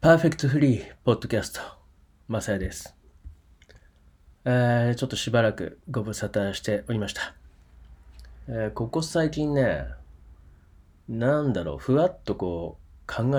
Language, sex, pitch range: Japanese, male, 70-110 Hz